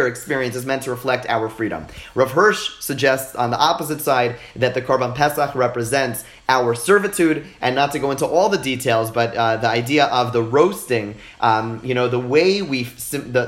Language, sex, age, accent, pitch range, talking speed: English, male, 30-49, American, 125-150 Hz, 195 wpm